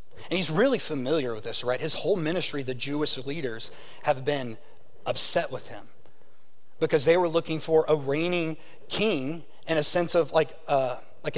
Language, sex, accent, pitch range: English, male, American, 145-175 Hz